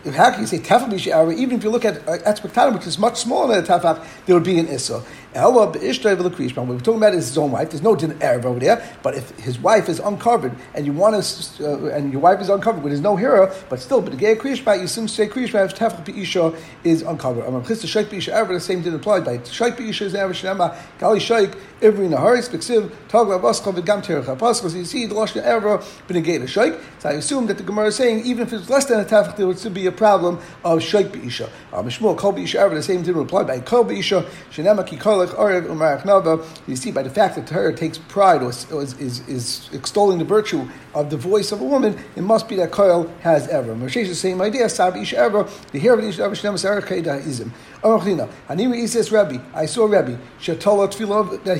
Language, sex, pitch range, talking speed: English, male, 170-220 Hz, 235 wpm